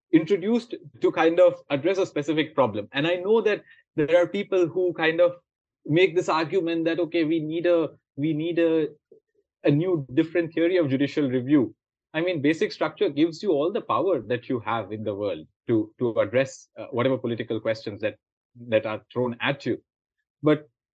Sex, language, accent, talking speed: male, English, Indian, 185 wpm